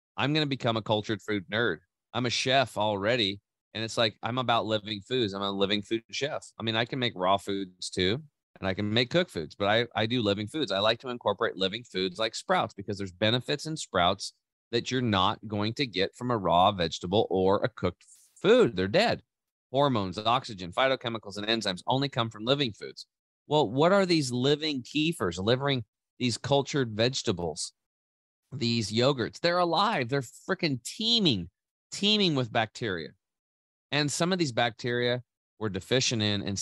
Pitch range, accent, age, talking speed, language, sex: 100-130 Hz, American, 30-49, 185 wpm, English, male